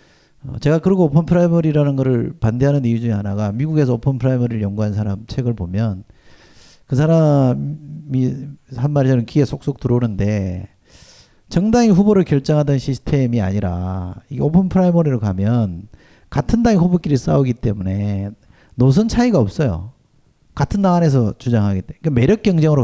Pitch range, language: 105-150 Hz, Korean